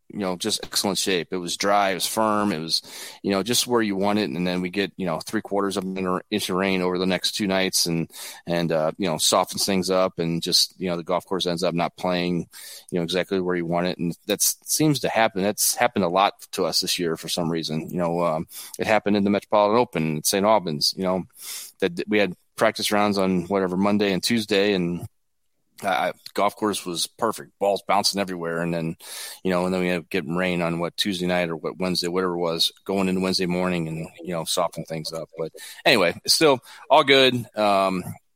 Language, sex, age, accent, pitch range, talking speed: English, male, 30-49, American, 85-100 Hz, 235 wpm